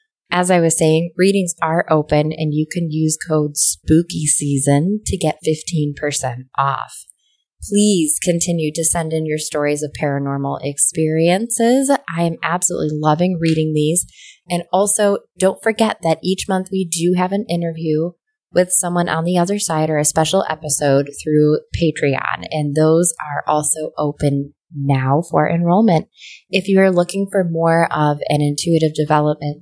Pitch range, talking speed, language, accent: 150-180 Hz, 150 wpm, English, American